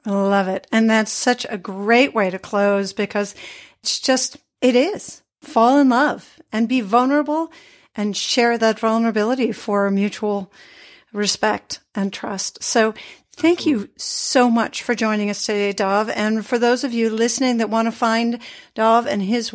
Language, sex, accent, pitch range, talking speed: English, female, American, 210-260 Hz, 165 wpm